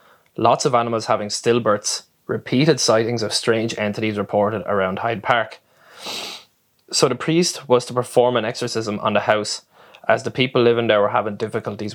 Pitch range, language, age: 105-120 Hz, English, 20-39